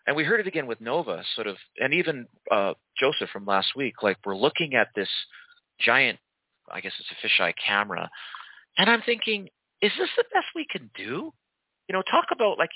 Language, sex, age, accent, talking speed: English, male, 40-59, American, 200 wpm